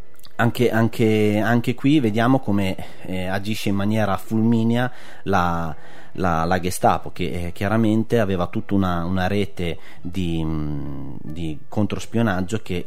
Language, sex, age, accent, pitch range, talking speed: Italian, male, 30-49, native, 90-110 Hz, 125 wpm